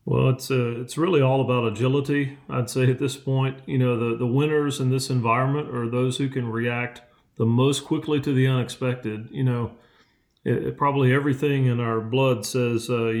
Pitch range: 120-135 Hz